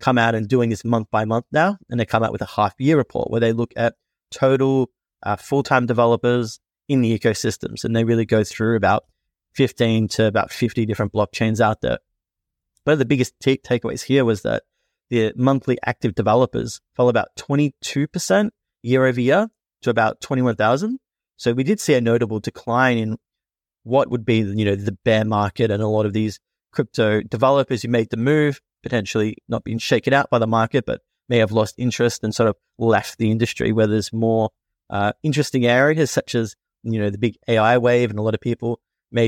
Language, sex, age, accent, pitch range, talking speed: English, male, 30-49, Australian, 110-130 Hz, 200 wpm